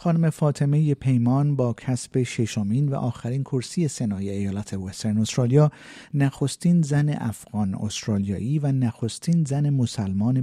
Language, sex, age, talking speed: Persian, male, 50-69, 120 wpm